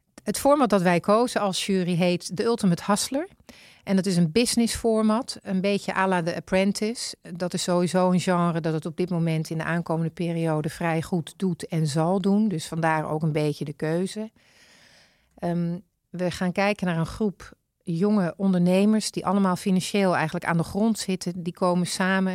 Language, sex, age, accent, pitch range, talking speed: Dutch, female, 40-59, Dutch, 165-190 Hz, 185 wpm